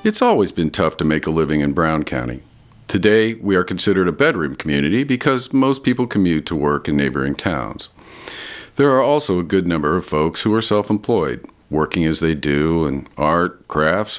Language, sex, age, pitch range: English, male, 50-69, 80-105 Hz